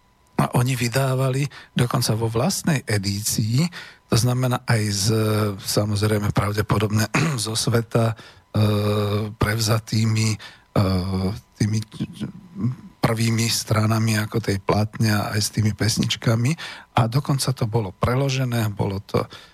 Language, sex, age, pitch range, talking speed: Slovak, male, 50-69, 105-130 Hz, 110 wpm